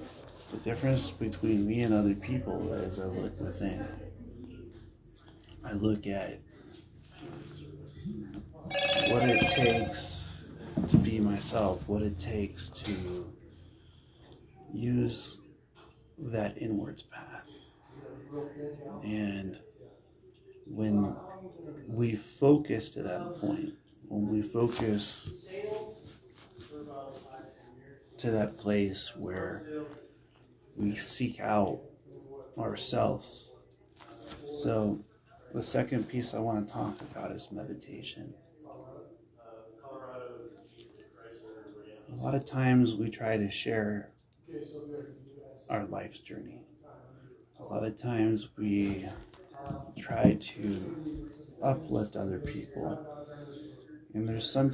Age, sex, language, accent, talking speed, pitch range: 40-59, male, English, American, 90 wpm, 105-135 Hz